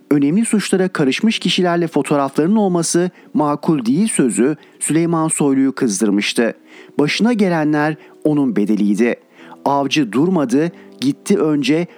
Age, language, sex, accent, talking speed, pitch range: 50-69, Turkish, male, native, 100 wpm, 140-185 Hz